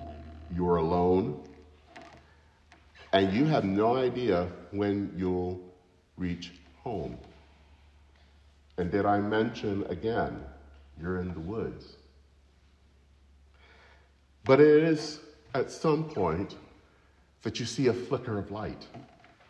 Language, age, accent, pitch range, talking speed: English, 40-59, American, 80-120 Hz, 105 wpm